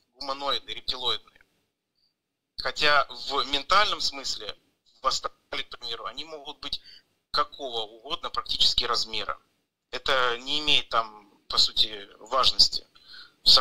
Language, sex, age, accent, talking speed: Russian, male, 30-49, native, 110 wpm